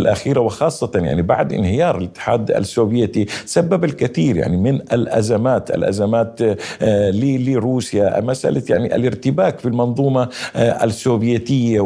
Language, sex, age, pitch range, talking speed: Arabic, male, 50-69, 105-130 Hz, 105 wpm